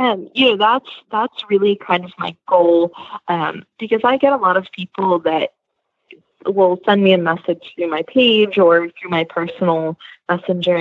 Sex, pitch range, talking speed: female, 170-210 Hz, 180 wpm